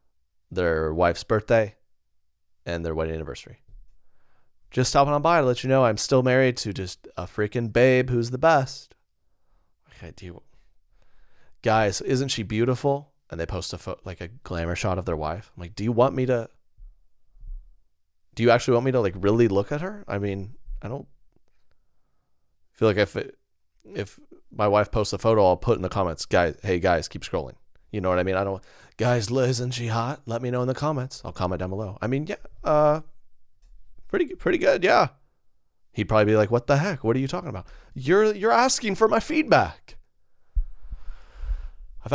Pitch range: 90-125 Hz